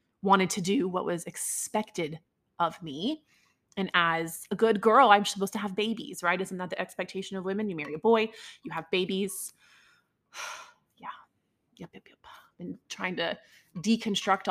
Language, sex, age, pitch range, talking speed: English, female, 20-39, 165-210 Hz, 165 wpm